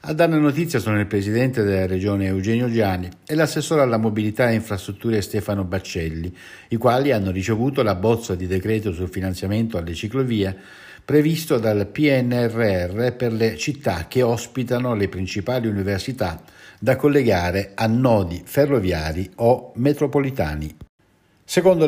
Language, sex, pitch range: Italian, male, 95-130 Hz